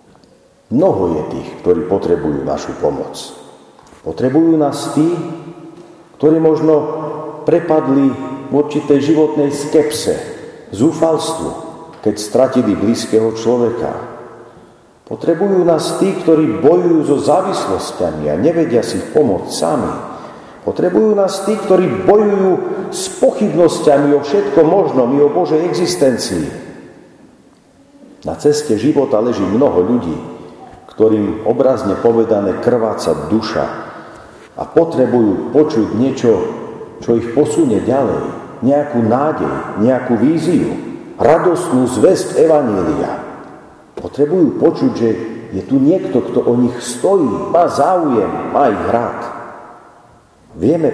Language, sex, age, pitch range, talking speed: Slovak, male, 50-69, 115-160 Hz, 105 wpm